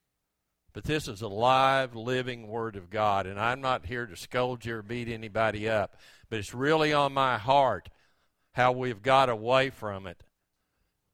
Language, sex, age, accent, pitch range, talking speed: English, male, 50-69, American, 110-150 Hz, 170 wpm